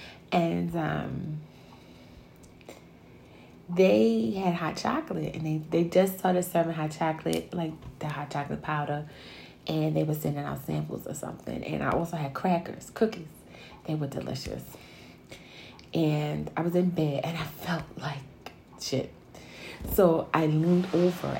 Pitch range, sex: 135-190 Hz, female